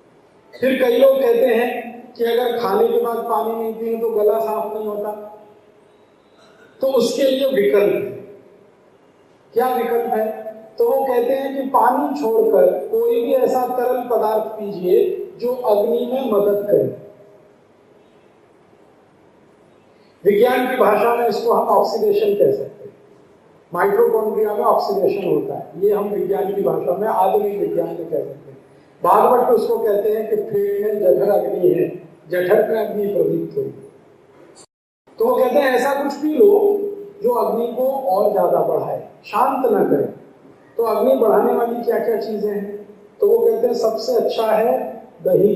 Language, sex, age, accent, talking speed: Hindi, male, 40-59, native, 155 wpm